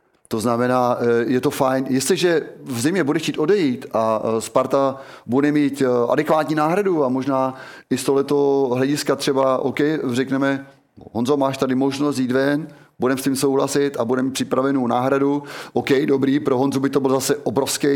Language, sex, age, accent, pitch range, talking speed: Czech, male, 30-49, native, 125-145 Hz, 160 wpm